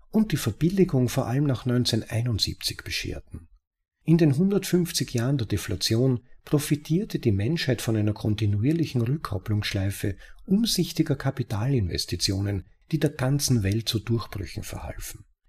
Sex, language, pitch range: male, German, 105-150 Hz